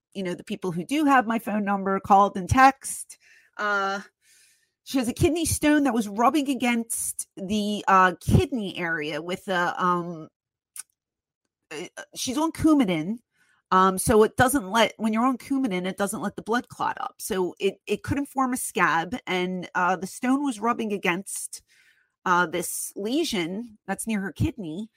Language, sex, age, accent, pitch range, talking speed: English, female, 30-49, American, 185-235 Hz, 170 wpm